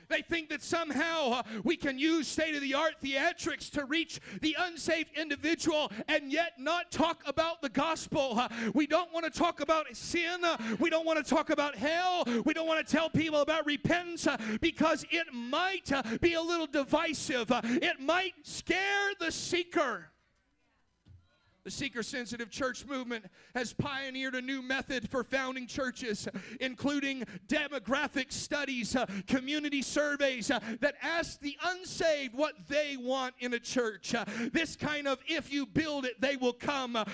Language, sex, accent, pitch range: English, male, American, 255-320 Hz